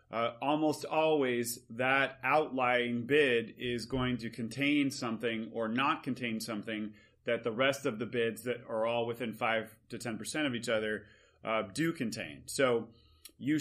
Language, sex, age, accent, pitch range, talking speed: English, male, 30-49, American, 115-135 Hz, 160 wpm